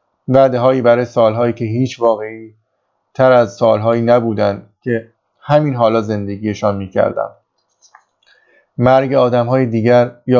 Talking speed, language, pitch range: 110 wpm, Persian, 110-125 Hz